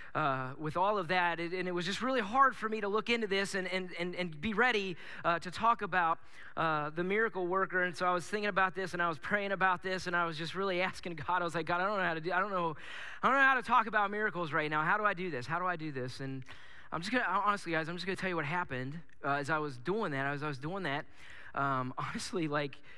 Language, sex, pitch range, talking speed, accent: English, male, 155-205 Hz, 290 wpm, American